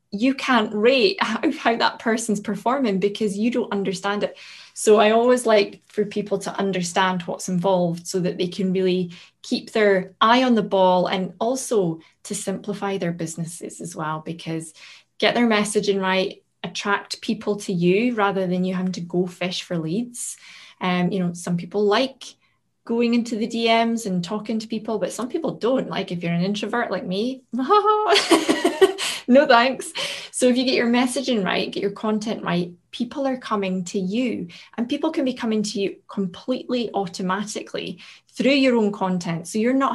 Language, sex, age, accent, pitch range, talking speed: English, female, 20-39, British, 190-235 Hz, 185 wpm